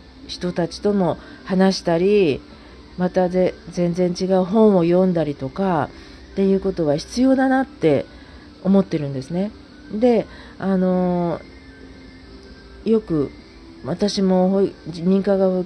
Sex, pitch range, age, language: female, 155-215 Hz, 40-59, Japanese